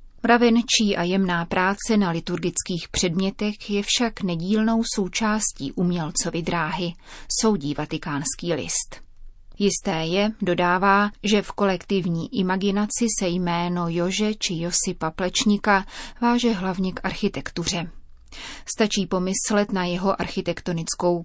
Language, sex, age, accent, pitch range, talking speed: Czech, female, 30-49, native, 175-210 Hz, 105 wpm